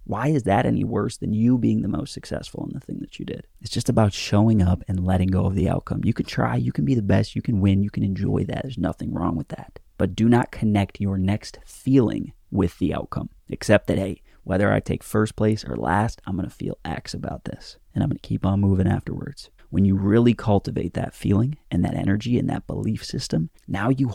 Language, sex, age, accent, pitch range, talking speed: English, male, 30-49, American, 95-120 Hz, 245 wpm